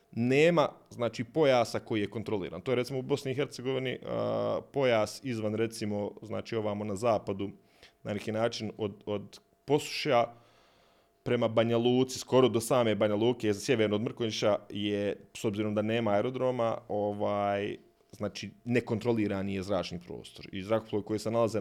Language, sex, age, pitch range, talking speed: Croatian, male, 30-49, 105-130 Hz, 150 wpm